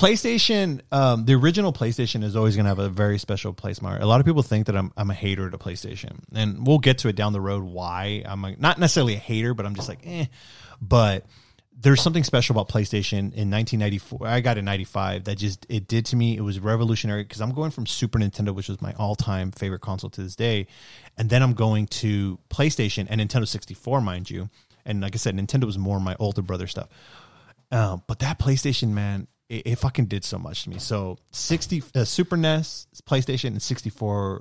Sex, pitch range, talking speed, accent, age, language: male, 100-125 Hz, 220 wpm, American, 30-49, English